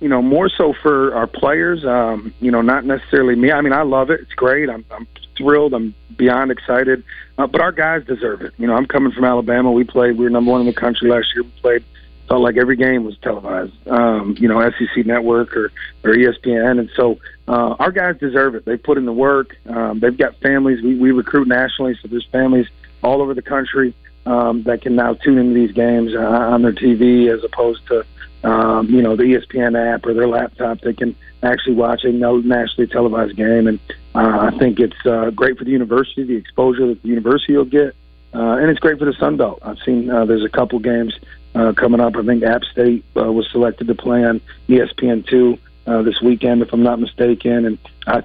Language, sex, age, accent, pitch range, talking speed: English, male, 40-59, American, 115-130 Hz, 220 wpm